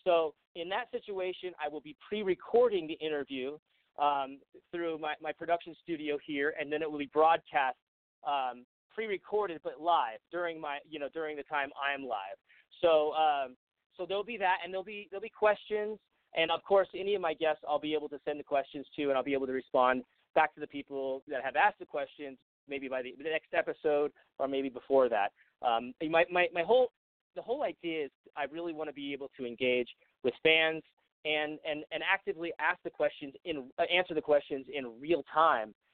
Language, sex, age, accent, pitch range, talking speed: English, male, 30-49, American, 140-175 Hz, 200 wpm